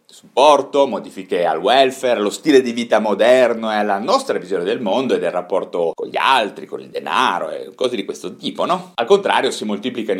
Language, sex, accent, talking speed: Italian, male, native, 200 wpm